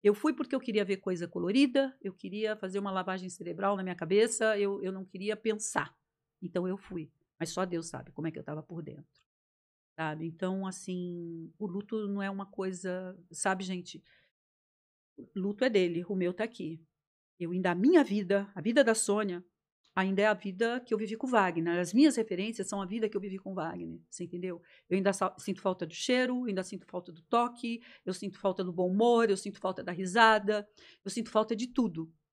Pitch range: 185-225 Hz